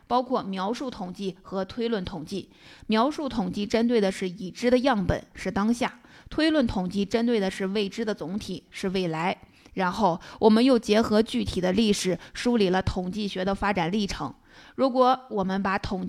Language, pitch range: Chinese, 190-235 Hz